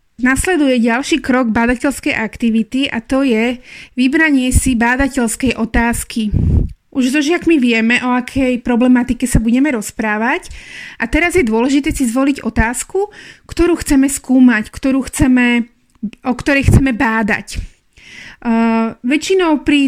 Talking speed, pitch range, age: 125 wpm, 235-280 Hz, 20-39